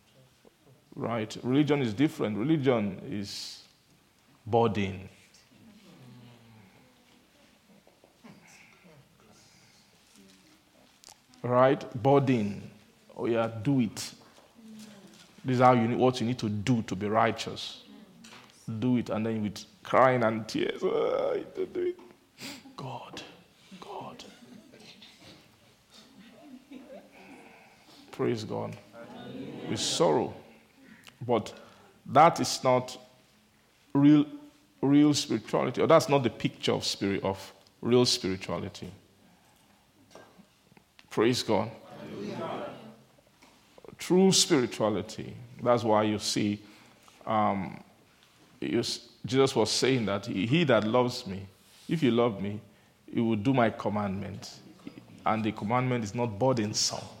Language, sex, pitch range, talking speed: English, male, 105-135 Hz, 90 wpm